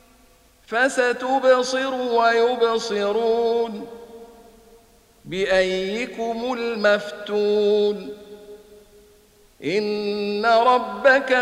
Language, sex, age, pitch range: Arabic, male, 50-69, 210-235 Hz